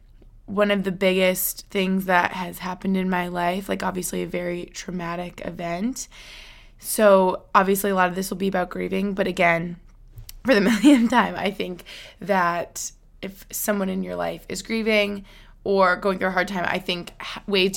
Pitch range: 180-210 Hz